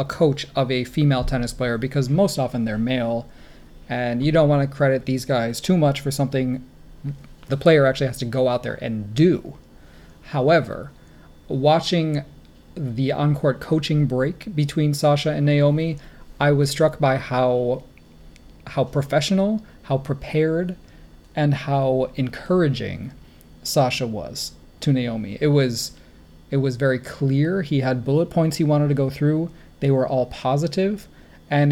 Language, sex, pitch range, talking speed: English, male, 130-155 Hz, 150 wpm